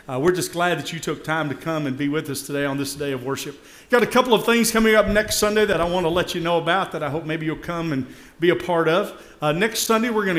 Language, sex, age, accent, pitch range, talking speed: English, male, 40-59, American, 150-195 Hz, 305 wpm